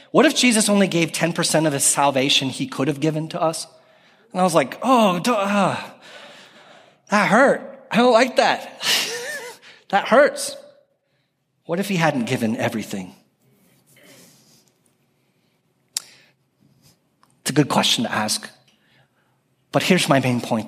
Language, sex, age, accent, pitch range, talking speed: English, male, 30-49, American, 155-240 Hz, 130 wpm